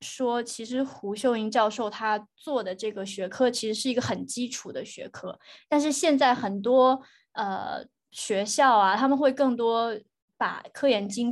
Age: 20-39